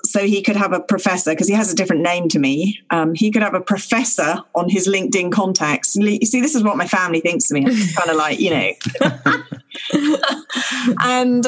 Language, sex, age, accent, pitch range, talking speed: English, female, 40-59, British, 185-245 Hz, 210 wpm